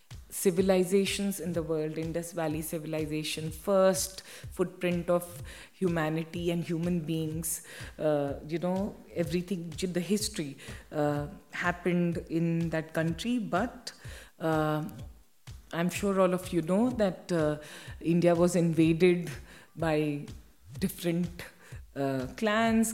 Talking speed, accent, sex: 110 wpm, Indian, female